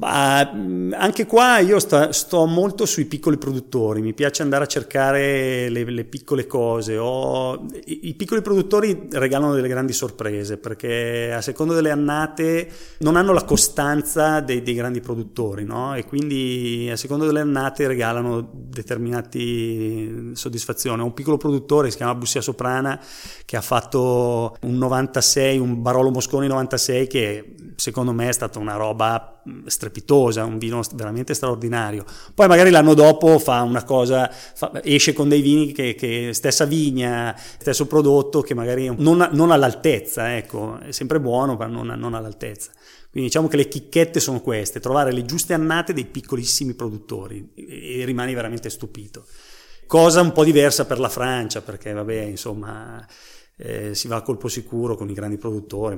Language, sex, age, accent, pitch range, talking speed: Italian, male, 30-49, native, 115-145 Hz, 165 wpm